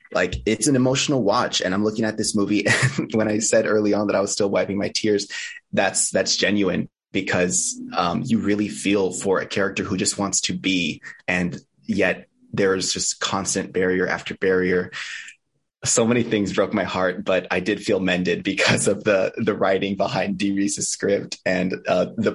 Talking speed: 190 wpm